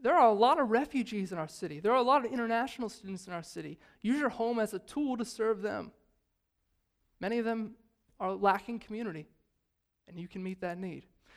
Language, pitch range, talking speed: English, 190-230 Hz, 210 wpm